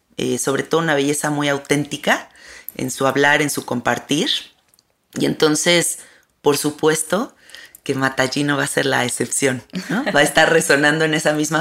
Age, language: 30-49, Spanish